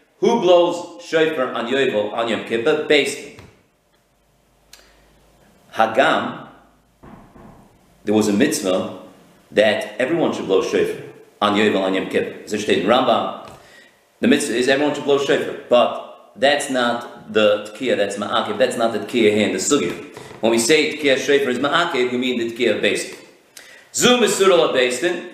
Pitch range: 135-200 Hz